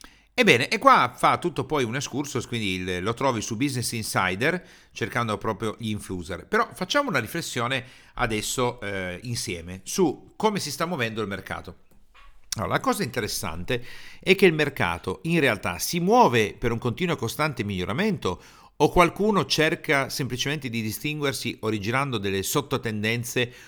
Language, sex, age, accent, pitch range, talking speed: Italian, male, 50-69, native, 105-140 Hz, 150 wpm